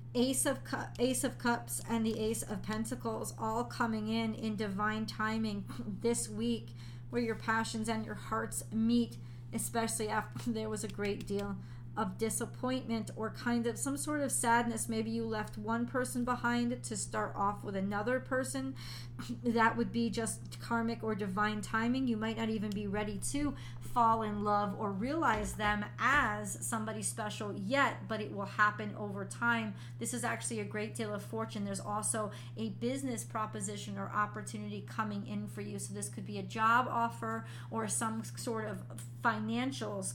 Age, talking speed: 40-59, 170 wpm